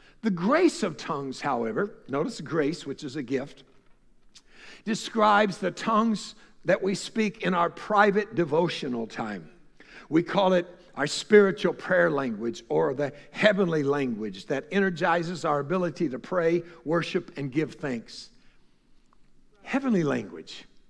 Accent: American